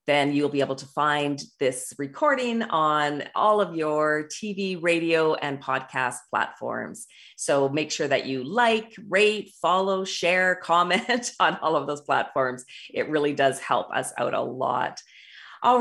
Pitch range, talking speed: 145-210 Hz, 155 wpm